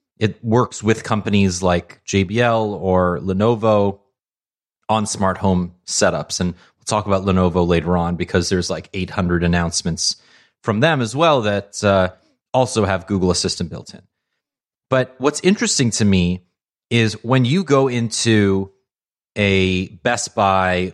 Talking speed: 140 wpm